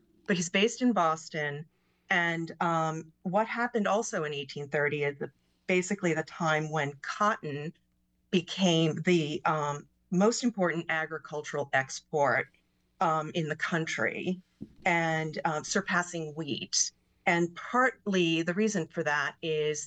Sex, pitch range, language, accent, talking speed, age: female, 155-180 Hz, English, American, 120 wpm, 40-59